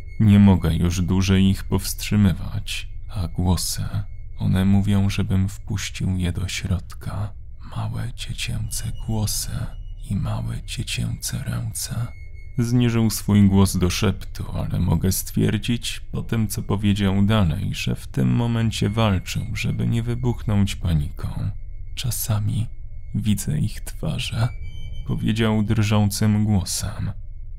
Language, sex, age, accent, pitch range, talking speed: Polish, male, 30-49, native, 95-110 Hz, 110 wpm